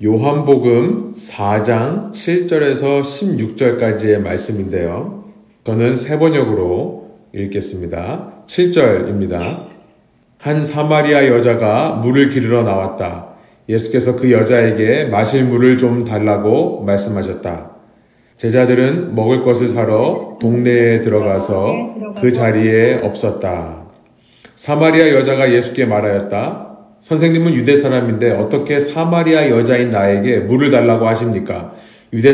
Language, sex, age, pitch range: Korean, male, 40-59, 110-140 Hz